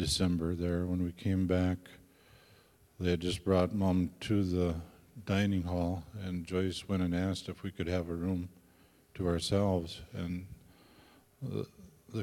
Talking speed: 145 wpm